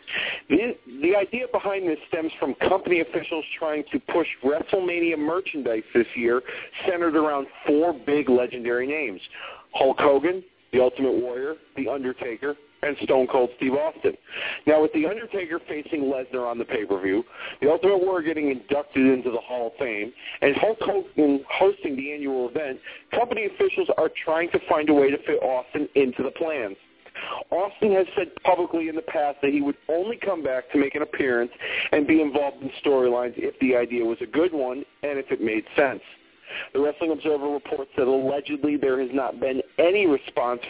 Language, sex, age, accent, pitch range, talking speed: English, male, 40-59, American, 130-185 Hz, 175 wpm